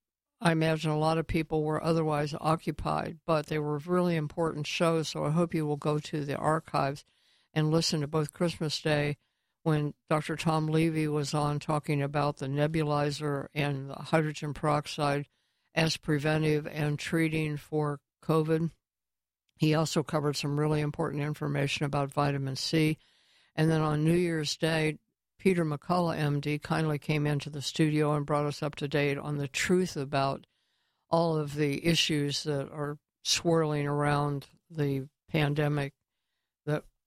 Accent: American